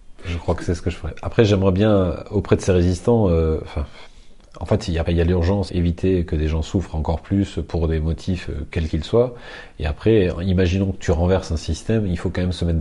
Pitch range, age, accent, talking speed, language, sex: 85-100 Hz, 30-49, French, 245 wpm, French, male